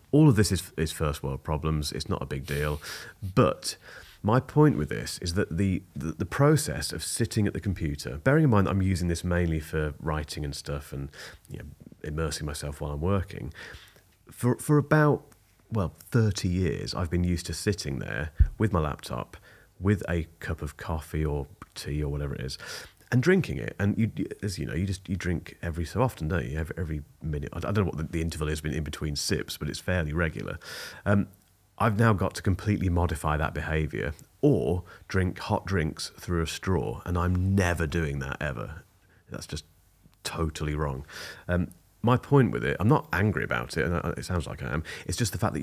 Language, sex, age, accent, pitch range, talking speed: English, male, 30-49, British, 75-95 Hz, 205 wpm